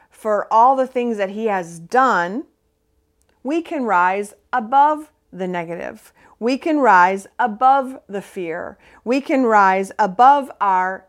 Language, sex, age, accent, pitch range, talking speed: English, female, 40-59, American, 180-235 Hz, 135 wpm